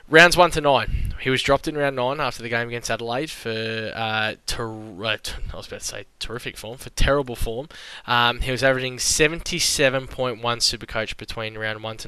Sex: male